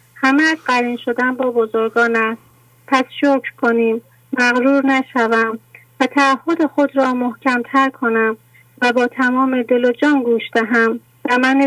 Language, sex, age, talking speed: English, female, 30-49, 125 wpm